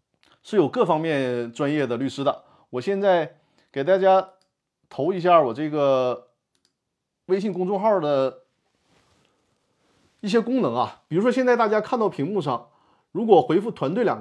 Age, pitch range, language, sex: 30-49, 135-185 Hz, Chinese, male